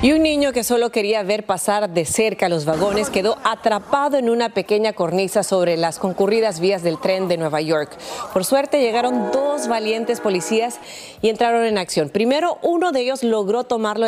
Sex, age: female, 30-49